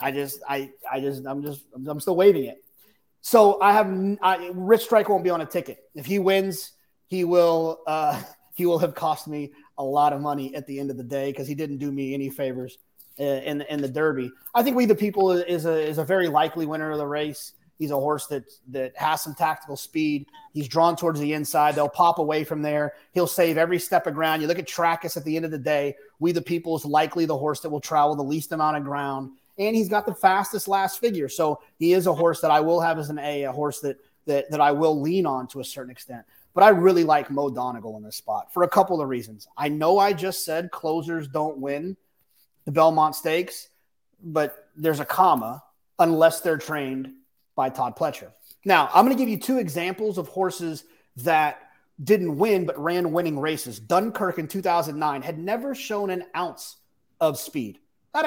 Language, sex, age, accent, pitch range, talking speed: English, male, 30-49, American, 145-180 Hz, 220 wpm